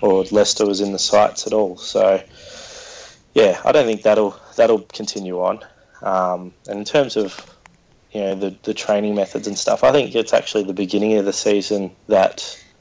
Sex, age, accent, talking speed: male, 20-39, Australian, 185 wpm